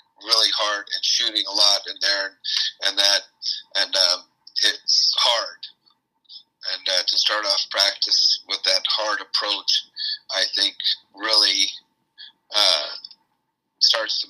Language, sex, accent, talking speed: English, male, American, 125 wpm